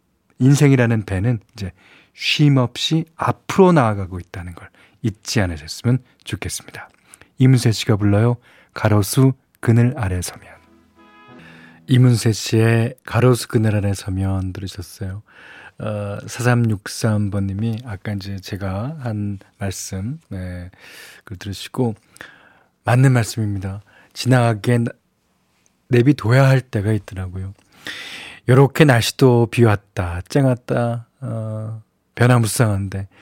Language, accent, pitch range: Korean, native, 100-125 Hz